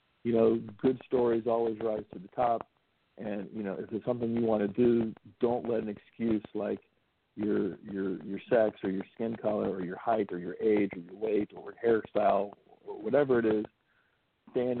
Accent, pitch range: American, 105-115 Hz